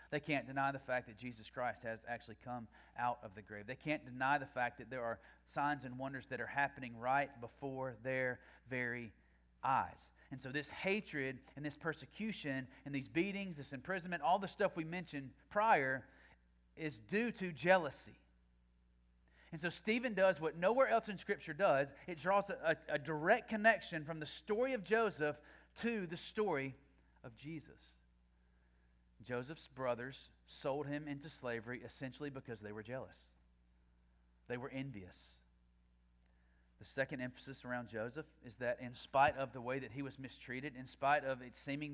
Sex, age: male, 30-49